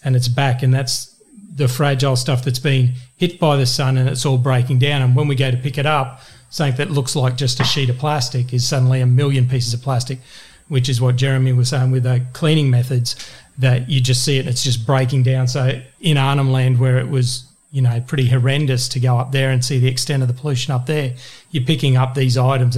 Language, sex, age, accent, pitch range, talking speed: English, male, 40-59, Australian, 125-140 Hz, 240 wpm